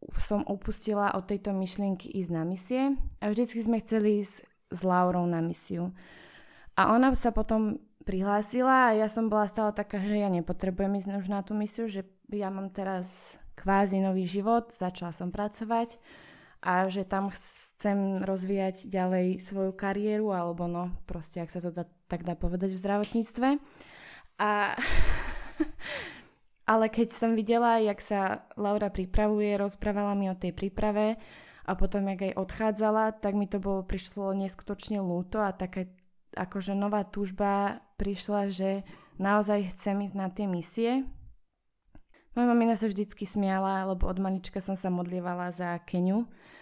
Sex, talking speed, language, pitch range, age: female, 150 wpm, Slovak, 185-210 Hz, 20-39